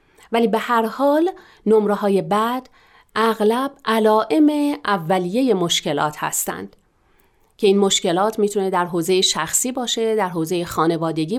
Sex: female